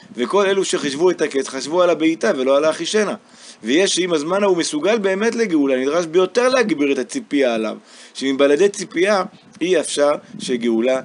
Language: Hebrew